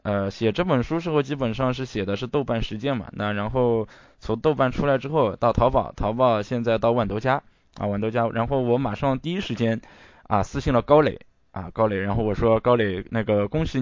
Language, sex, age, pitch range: Chinese, male, 10-29, 105-130 Hz